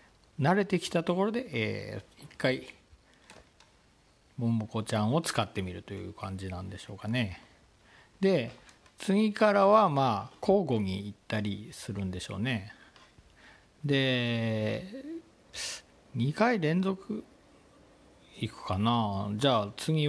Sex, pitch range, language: male, 100-130 Hz, Japanese